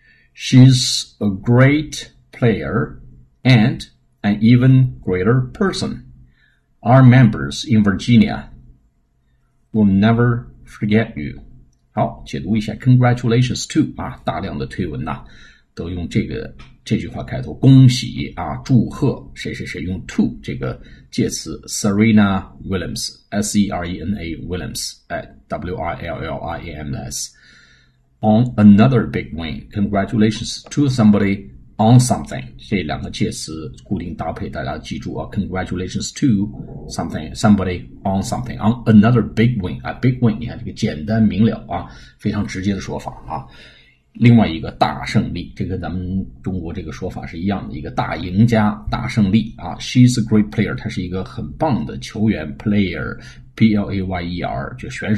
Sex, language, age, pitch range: male, Chinese, 50-69, 95-115 Hz